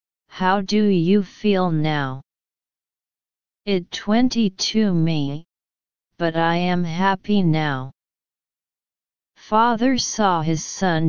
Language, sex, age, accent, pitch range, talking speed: English, female, 40-59, American, 160-200 Hz, 90 wpm